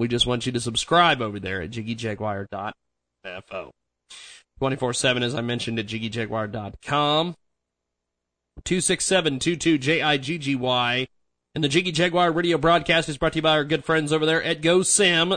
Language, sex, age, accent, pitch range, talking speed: English, male, 30-49, American, 110-160 Hz, 185 wpm